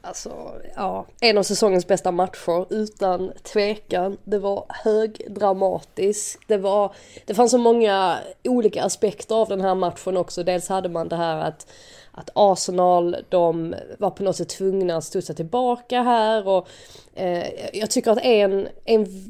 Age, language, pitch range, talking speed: 20-39, Swedish, 180-220 Hz, 155 wpm